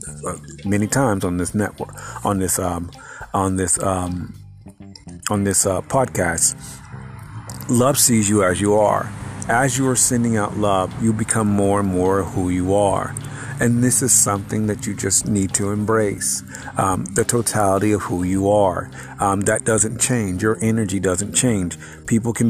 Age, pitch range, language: 40-59, 95-110 Hz, English